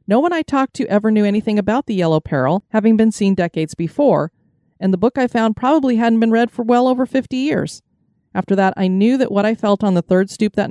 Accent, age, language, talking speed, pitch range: American, 30-49, English, 245 wpm, 175-220 Hz